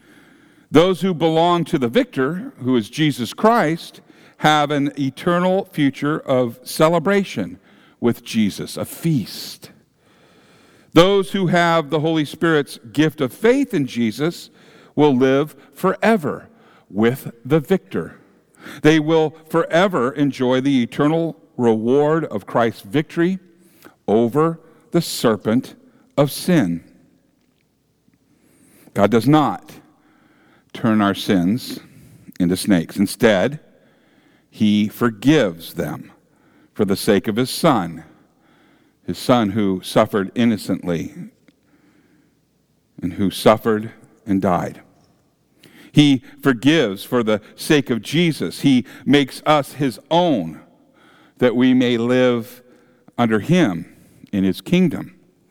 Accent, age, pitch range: American, 50-69, 120-165 Hz